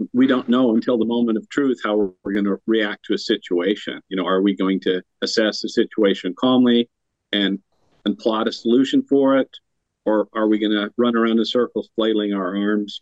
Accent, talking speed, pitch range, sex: American, 205 wpm, 105-125 Hz, male